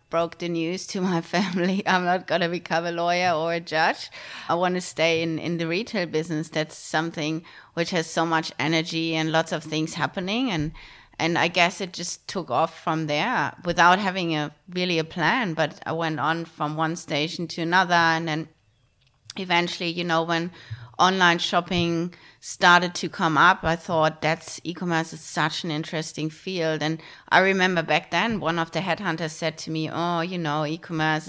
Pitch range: 160-175 Hz